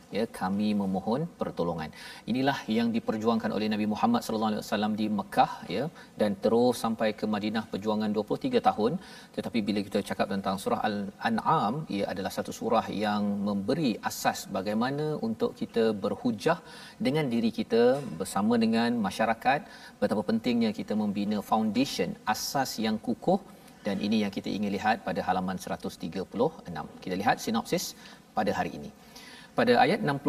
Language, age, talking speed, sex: Malayalam, 40-59, 145 wpm, male